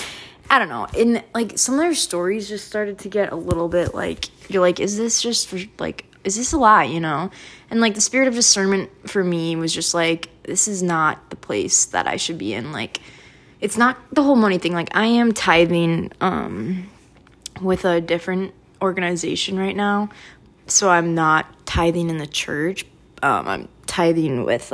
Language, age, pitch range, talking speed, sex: English, 20-39, 170-210 Hz, 195 wpm, female